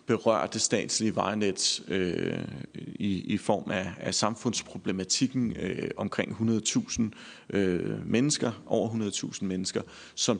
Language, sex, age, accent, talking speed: Danish, male, 40-59, native, 115 wpm